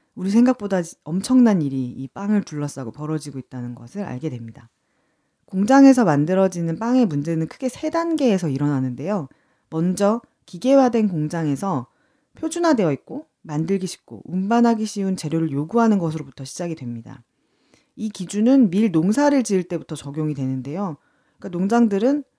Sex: female